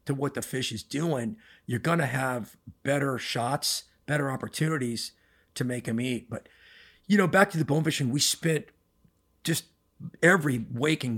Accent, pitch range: American, 120-145 Hz